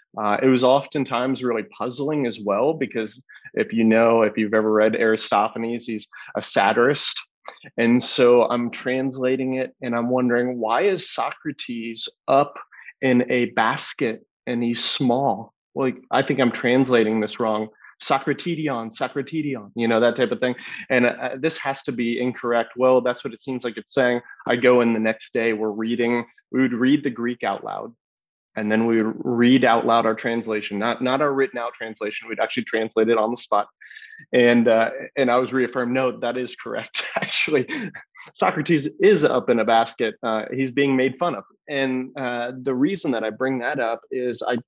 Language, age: English, 20-39